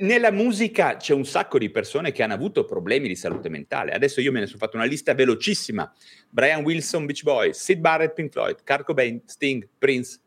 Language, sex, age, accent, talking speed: Italian, male, 30-49, native, 205 wpm